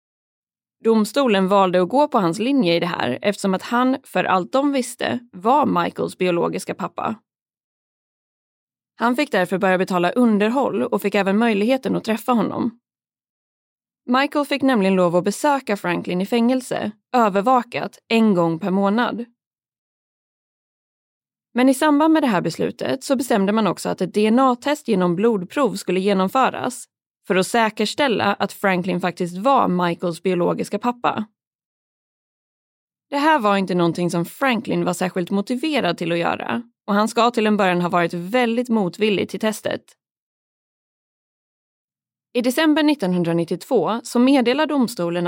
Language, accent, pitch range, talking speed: Swedish, native, 185-250 Hz, 140 wpm